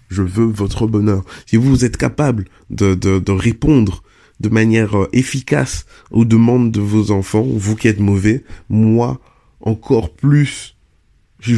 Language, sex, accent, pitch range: French, male, French, 100-120 Hz